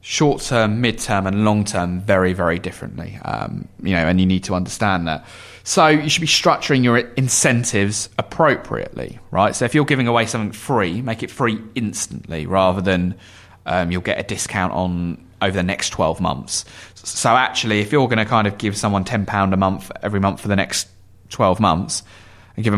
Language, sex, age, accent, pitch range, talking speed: English, male, 20-39, British, 90-110 Hz, 195 wpm